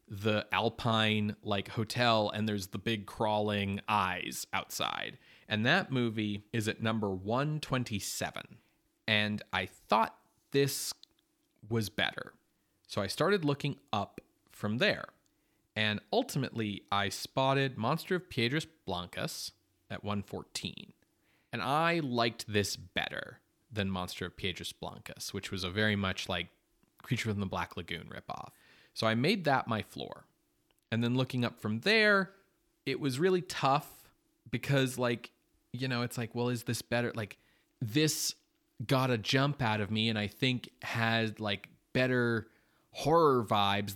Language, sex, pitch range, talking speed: English, male, 105-130 Hz, 145 wpm